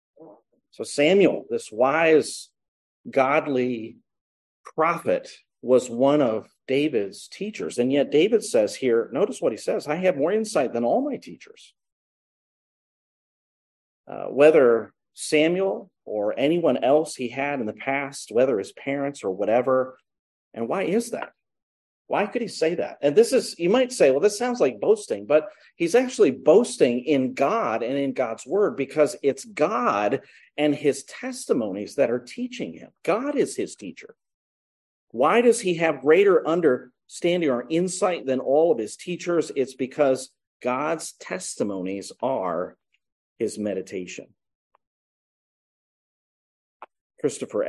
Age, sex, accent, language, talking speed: 40-59, male, American, English, 135 wpm